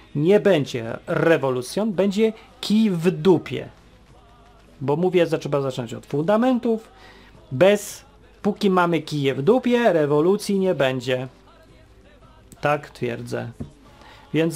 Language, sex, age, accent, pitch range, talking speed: Polish, male, 40-59, native, 140-210 Hz, 105 wpm